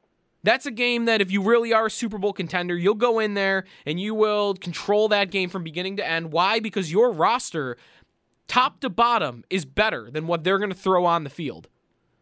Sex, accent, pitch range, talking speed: male, American, 160-210 Hz, 215 wpm